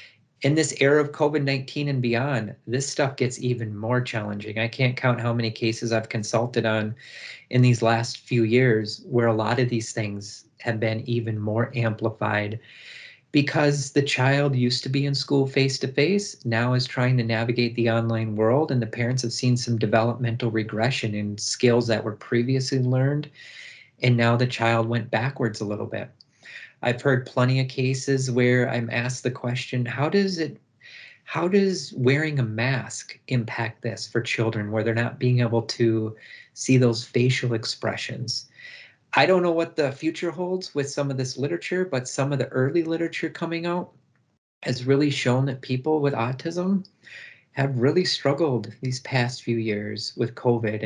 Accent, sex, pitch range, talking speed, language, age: American, male, 115-140 Hz, 170 wpm, English, 30-49